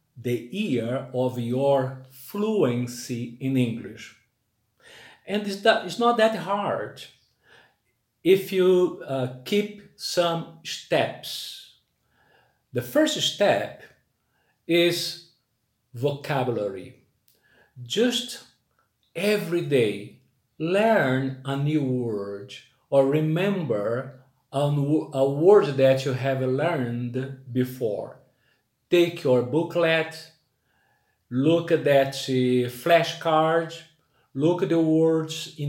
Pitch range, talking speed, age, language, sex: 130-170 Hz, 90 wpm, 50-69, English, male